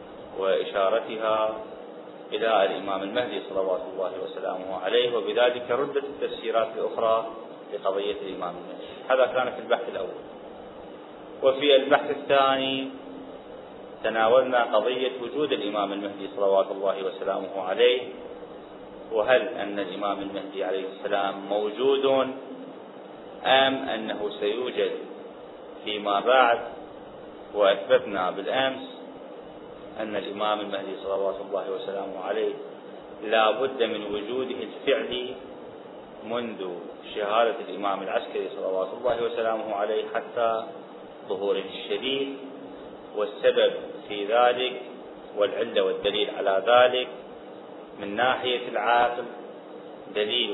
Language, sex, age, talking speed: Arabic, male, 30-49, 95 wpm